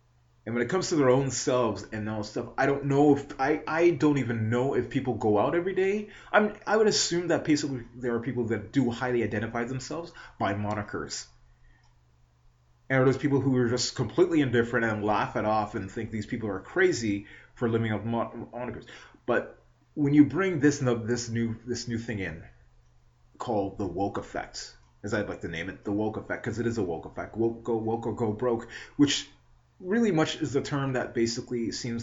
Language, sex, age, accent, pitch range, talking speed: English, male, 30-49, American, 105-135 Hz, 200 wpm